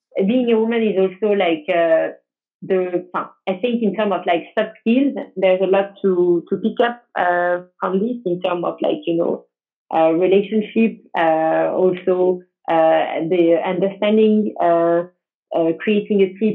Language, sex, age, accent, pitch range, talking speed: English, female, 30-49, French, 175-215 Hz, 150 wpm